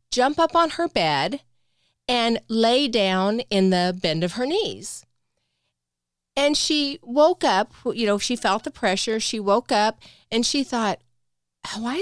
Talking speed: 155 wpm